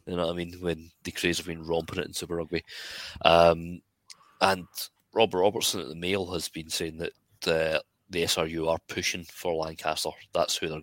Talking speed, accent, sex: 215 wpm, British, male